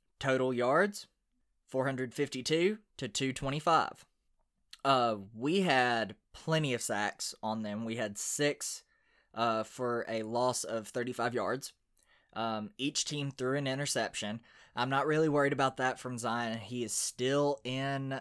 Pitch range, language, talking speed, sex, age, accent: 115-140 Hz, English, 135 wpm, male, 20-39, American